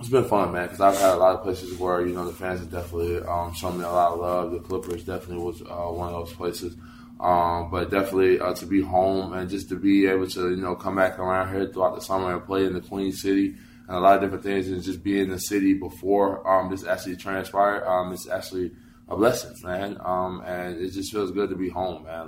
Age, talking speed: 20-39, 255 wpm